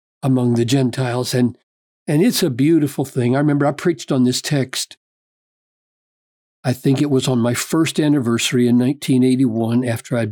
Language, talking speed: English, 165 wpm